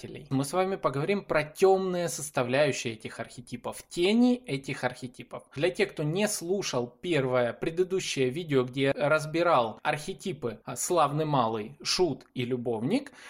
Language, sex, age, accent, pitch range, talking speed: Russian, male, 20-39, native, 130-210 Hz, 135 wpm